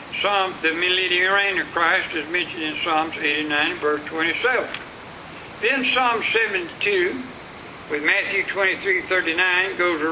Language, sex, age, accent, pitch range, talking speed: English, male, 60-79, American, 170-260 Hz, 125 wpm